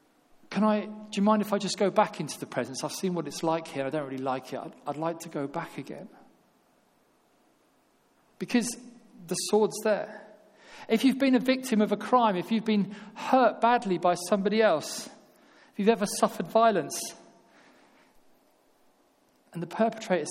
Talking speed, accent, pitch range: 175 wpm, British, 175-225 Hz